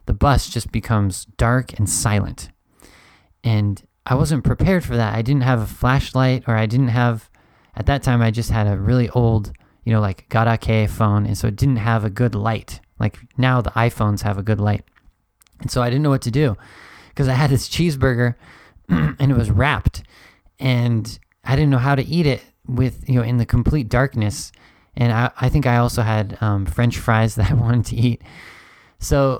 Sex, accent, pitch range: male, American, 110-130 Hz